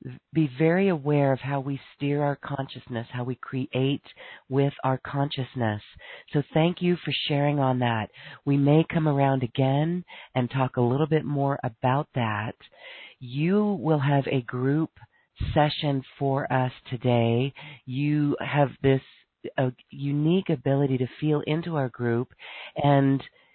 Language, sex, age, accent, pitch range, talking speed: English, female, 40-59, American, 130-150 Hz, 145 wpm